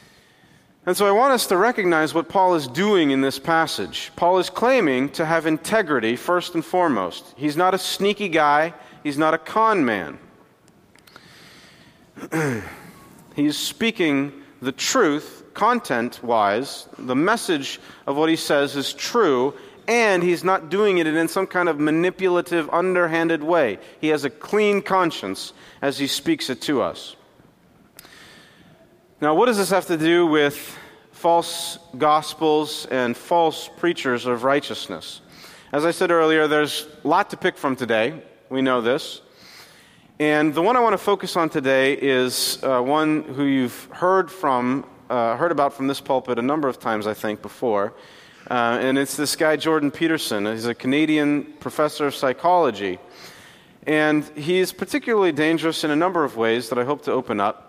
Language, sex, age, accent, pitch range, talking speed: English, male, 40-59, American, 135-175 Hz, 160 wpm